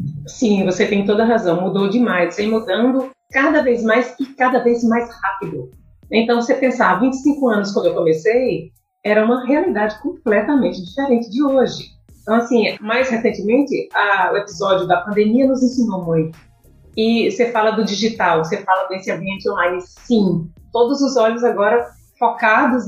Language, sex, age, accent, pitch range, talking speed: Portuguese, female, 40-59, Brazilian, 200-255 Hz, 165 wpm